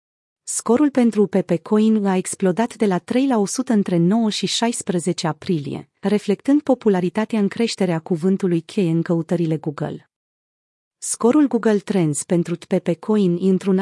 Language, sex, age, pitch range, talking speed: Romanian, female, 30-49, 180-230 Hz, 145 wpm